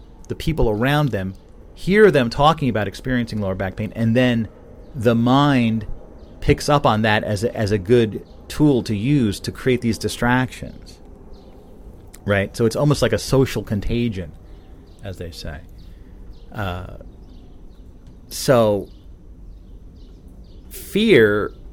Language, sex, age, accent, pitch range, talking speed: English, male, 30-49, American, 90-120 Hz, 125 wpm